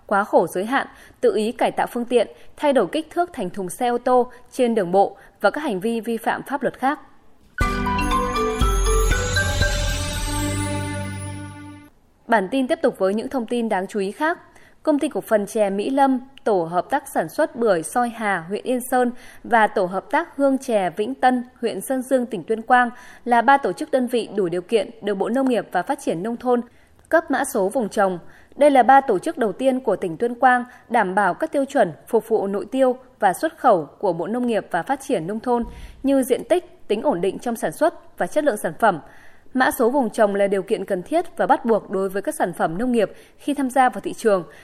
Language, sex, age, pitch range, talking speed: Vietnamese, female, 20-39, 200-275 Hz, 225 wpm